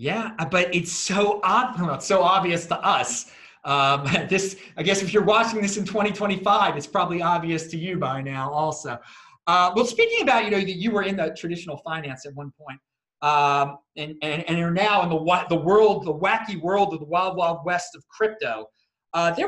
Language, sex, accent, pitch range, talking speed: English, male, American, 160-215 Hz, 205 wpm